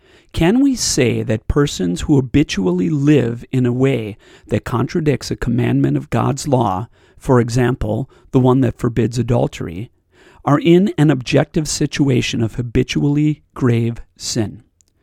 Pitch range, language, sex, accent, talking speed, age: 115-150 Hz, English, male, American, 135 wpm, 40-59